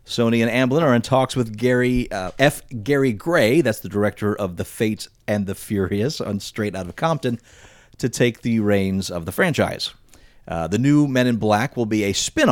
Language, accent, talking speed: English, American, 205 wpm